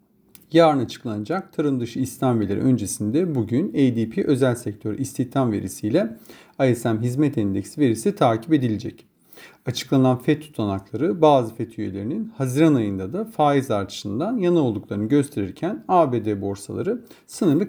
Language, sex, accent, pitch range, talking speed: Turkish, male, native, 110-150 Hz, 120 wpm